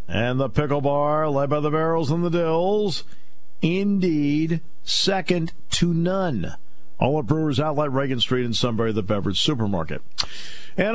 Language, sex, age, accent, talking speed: English, male, 50-69, American, 150 wpm